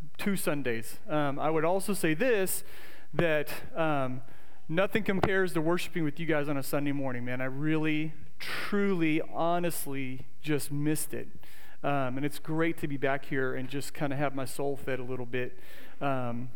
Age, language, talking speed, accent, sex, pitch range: 40-59, English, 180 wpm, American, male, 140-175 Hz